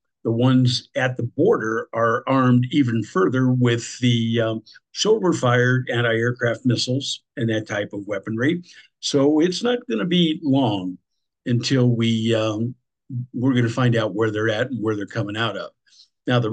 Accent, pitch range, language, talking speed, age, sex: American, 115-140 Hz, English, 170 wpm, 50-69, male